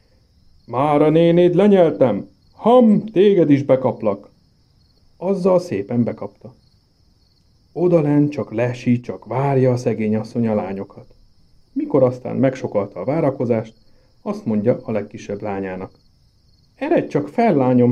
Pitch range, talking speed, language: 110-165 Hz, 110 wpm, Hungarian